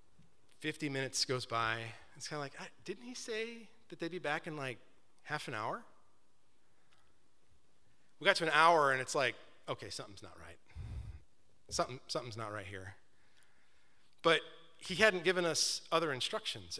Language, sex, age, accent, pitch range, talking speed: English, male, 30-49, American, 115-155 Hz, 160 wpm